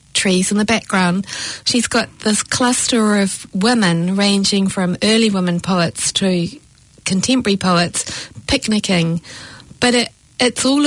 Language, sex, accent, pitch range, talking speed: English, female, British, 180-215 Hz, 120 wpm